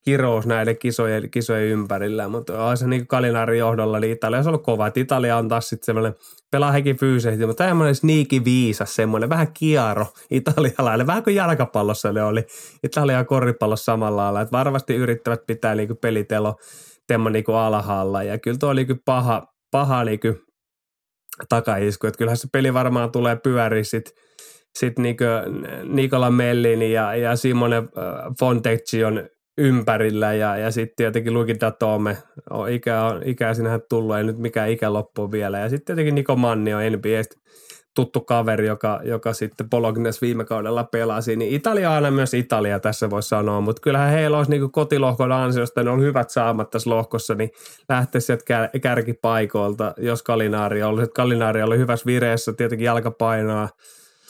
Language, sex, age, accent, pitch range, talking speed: Finnish, male, 20-39, native, 110-125 Hz, 160 wpm